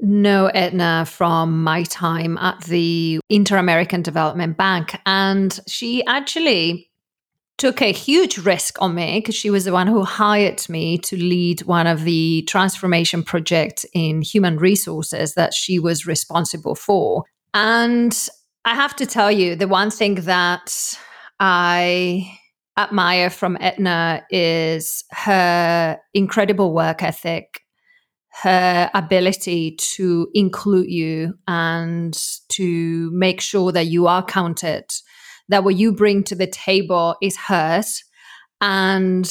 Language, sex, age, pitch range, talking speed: English, female, 30-49, 170-195 Hz, 130 wpm